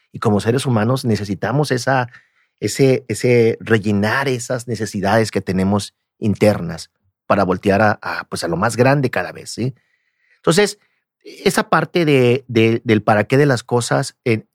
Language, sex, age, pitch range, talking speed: Spanish, male, 40-59, 110-155 Hz, 155 wpm